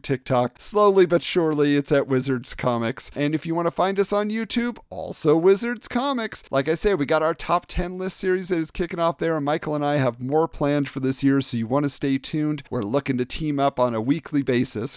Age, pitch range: 40-59, 140-190 Hz